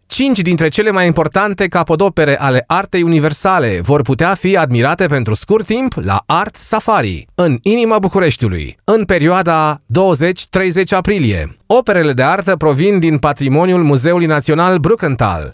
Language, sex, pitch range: Romanian, male, 150-200 Hz